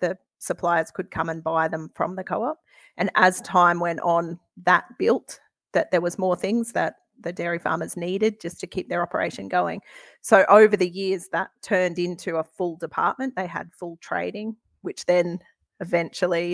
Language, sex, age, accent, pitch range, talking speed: English, female, 30-49, Australian, 170-190 Hz, 180 wpm